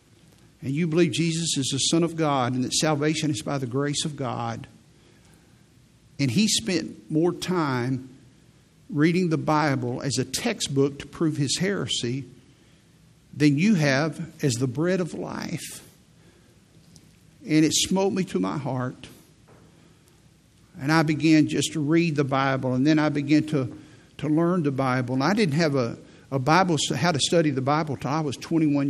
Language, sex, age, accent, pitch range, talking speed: English, male, 50-69, American, 135-165 Hz, 170 wpm